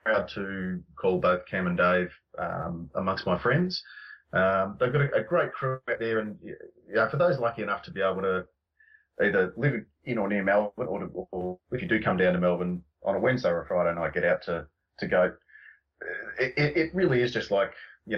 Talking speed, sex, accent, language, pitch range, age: 220 wpm, male, Australian, English, 90-125 Hz, 30-49